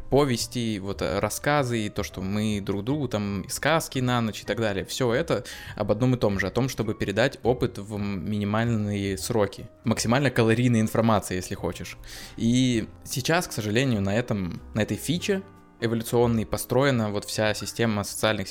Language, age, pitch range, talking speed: Russian, 20-39, 100-120 Hz, 165 wpm